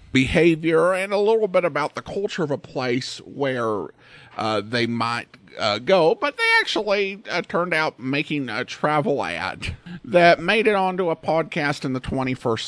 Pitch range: 145-220 Hz